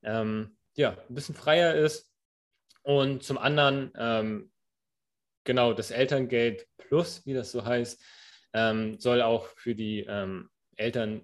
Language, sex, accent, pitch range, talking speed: German, male, German, 110-130 Hz, 135 wpm